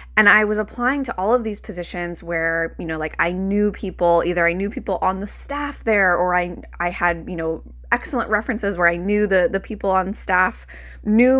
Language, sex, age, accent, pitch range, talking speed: English, female, 20-39, American, 170-215 Hz, 215 wpm